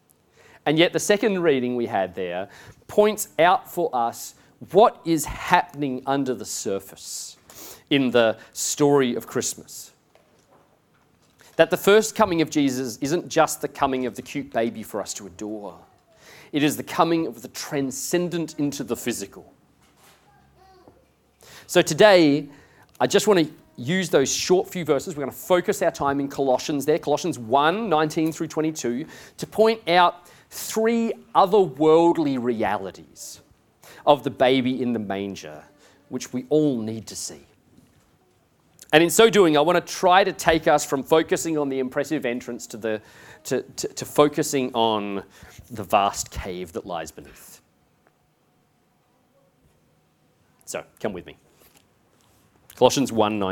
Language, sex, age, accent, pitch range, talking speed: English, male, 40-59, Australian, 125-170 Hz, 145 wpm